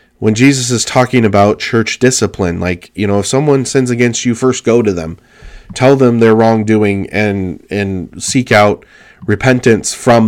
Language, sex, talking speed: English, male, 170 wpm